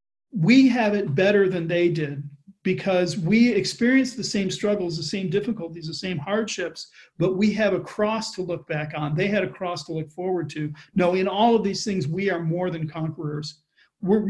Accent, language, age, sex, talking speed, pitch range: American, English, 40-59, male, 200 wpm, 175-225 Hz